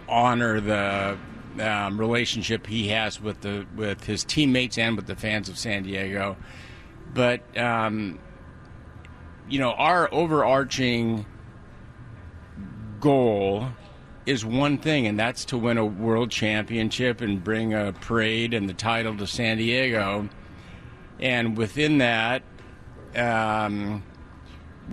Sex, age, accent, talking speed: male, 50-69, American, 120 wpm